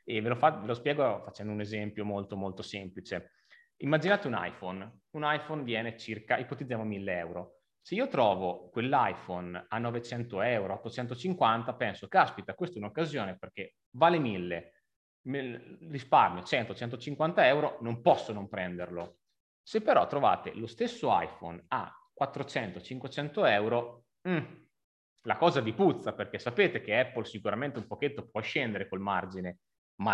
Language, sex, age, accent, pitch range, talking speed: Italian, male, 30-49, native, 105-145 Hz, 145 wpm